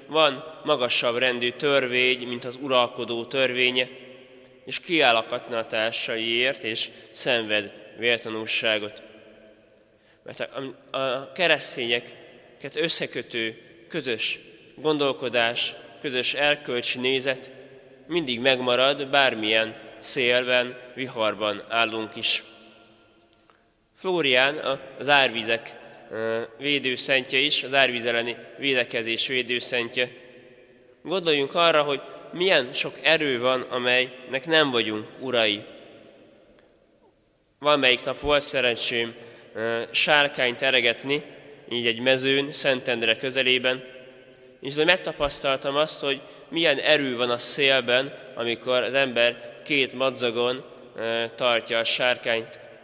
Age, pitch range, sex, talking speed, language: 20-39, 115-135 Hz, male, 90 wpm, Hungarian